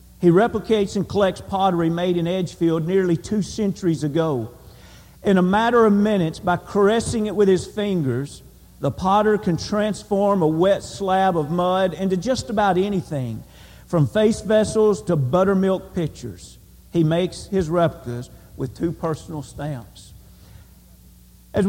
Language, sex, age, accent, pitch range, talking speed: English, male, 50-69, American, 165-210 Hz, 140 wpm